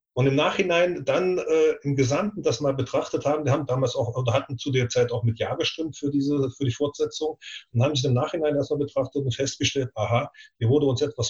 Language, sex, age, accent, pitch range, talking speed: German, male, 30-49, German, 115-140 Hz, 240 wpm